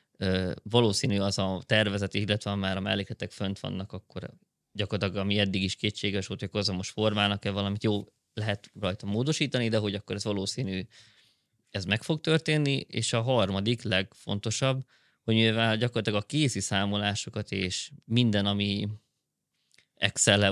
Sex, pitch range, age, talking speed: male, 100-115 Hz, 20-39, 140 wpm